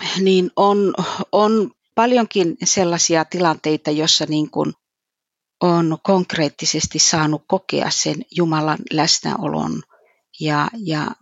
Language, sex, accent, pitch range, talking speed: Finnish, female, native, 160-190 Hz, 90 wpm